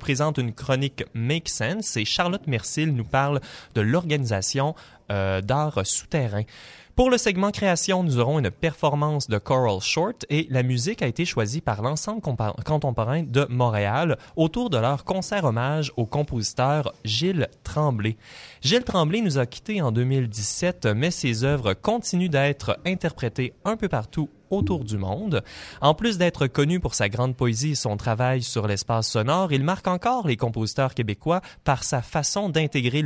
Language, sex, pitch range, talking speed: French, male, 115-160 Hz, 160 wpm